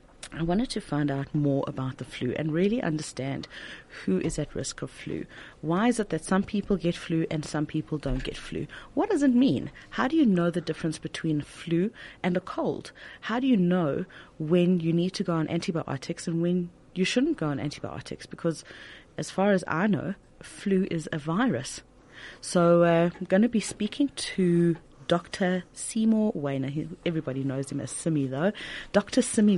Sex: female